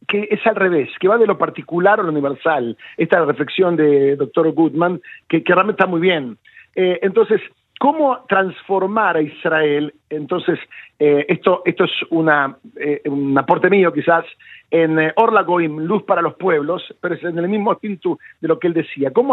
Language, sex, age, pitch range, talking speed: Spanish, male, 50-69, 160-210 Hz, 195 wpm